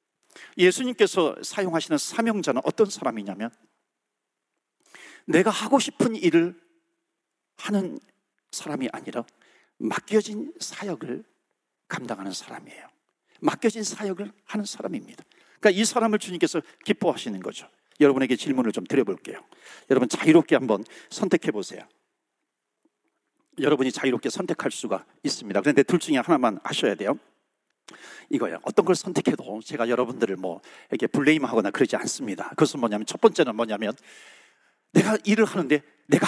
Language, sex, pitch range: Korean, male, 155-250 Hz